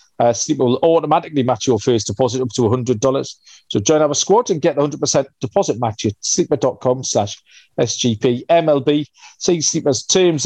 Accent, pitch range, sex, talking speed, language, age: British, 125-150 Hz, male, 160 wpm, English, 40-59